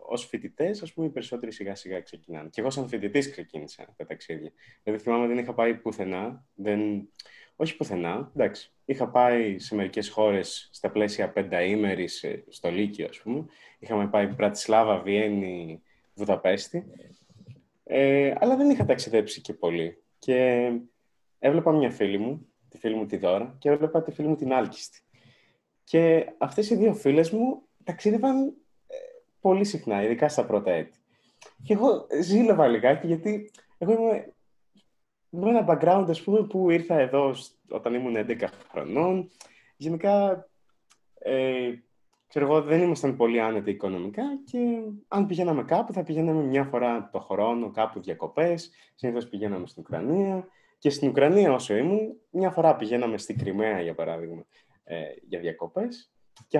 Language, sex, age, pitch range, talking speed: Greek, male, 20-39, 110-180 Hz, 145 wpm